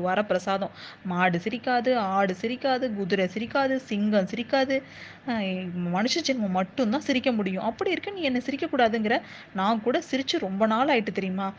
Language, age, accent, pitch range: Tamil, 20-39, native, 185-240 Hz